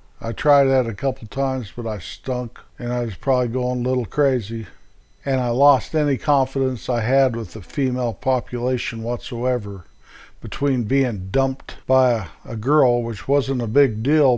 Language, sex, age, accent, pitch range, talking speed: English, male, 50-69, American, 115-135 Hz, 165 wpm